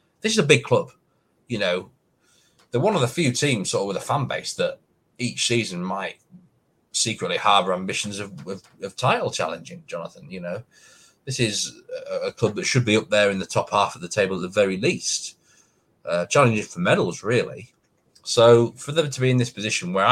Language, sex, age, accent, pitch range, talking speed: English, male, 30-49, British, 90-130 Hz, 205 wpm